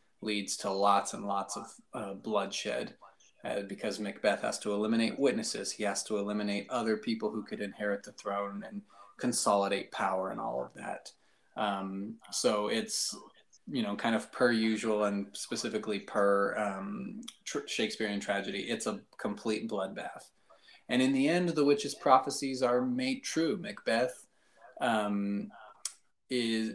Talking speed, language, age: 145 wpm, English, 20-39